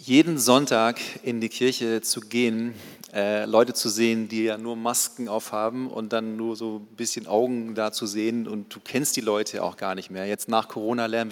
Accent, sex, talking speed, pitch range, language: German, male, 205 wpm, 110-130 Hz, German